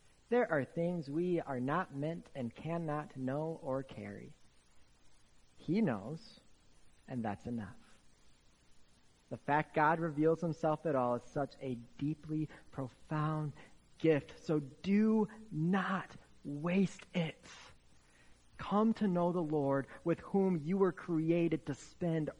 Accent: American